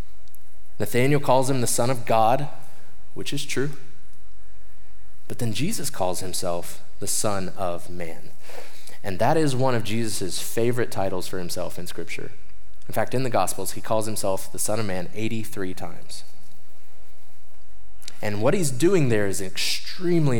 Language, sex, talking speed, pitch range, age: English, male, 155 wpm, 100-140 Hz, 20-39